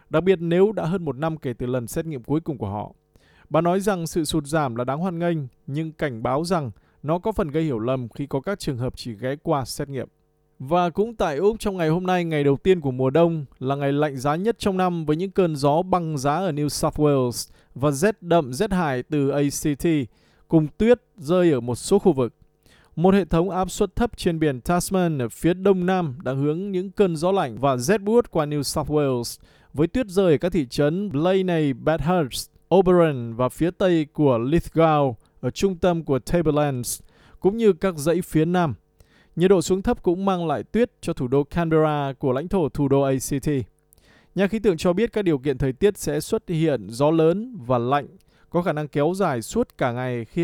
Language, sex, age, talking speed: Vietnamese, male, 20-39, 225 wpm